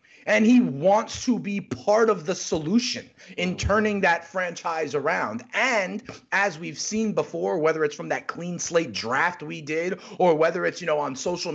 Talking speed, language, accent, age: 180 wpm, English, American, 30-49